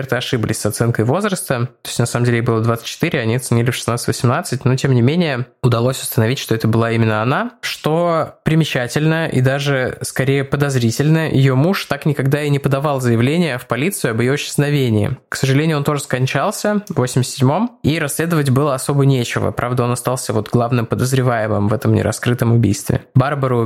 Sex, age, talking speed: male, 20-39, 175 wpm